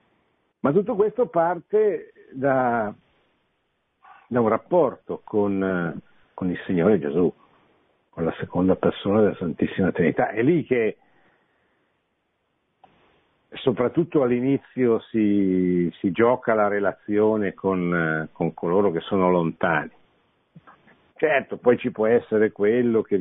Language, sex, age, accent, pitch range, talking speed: Italian, male, 60-79, native, 100-135 Hz, 110 wpm